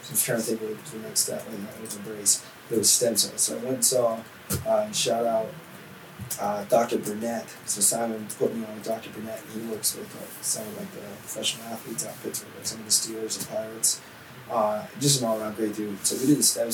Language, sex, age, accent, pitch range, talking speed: English, male, 20-39, American, 105-125 Hz, 250 wpm